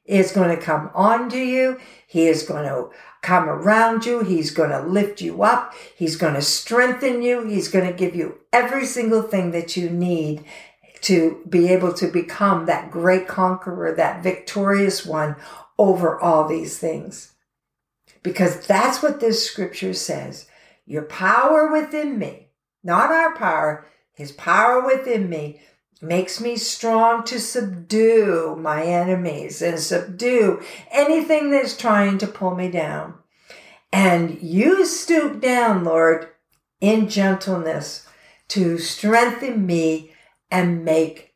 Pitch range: 165-225 Hz